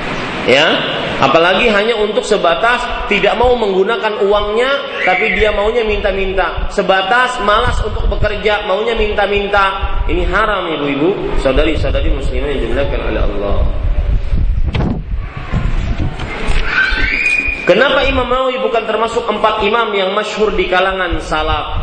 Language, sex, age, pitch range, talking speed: Malay, male, 30-49, 205-275 Hz, 110 wpm